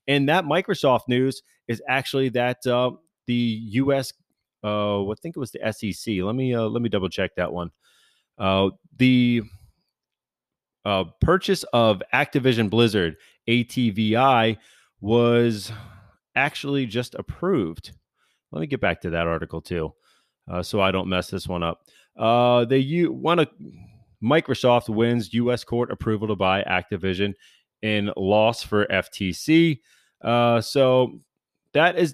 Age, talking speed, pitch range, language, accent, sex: 30-49, 135 wpm, 100-130 Hz, English, American, male